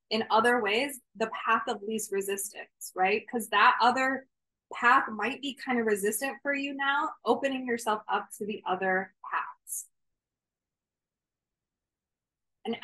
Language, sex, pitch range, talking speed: English, female, 210-250 Hz, 135 wpm